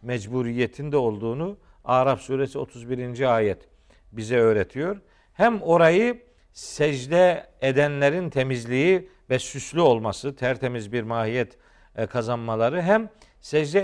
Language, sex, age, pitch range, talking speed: Turkish, male, 50-69, 120-165 Hz, 95 wpm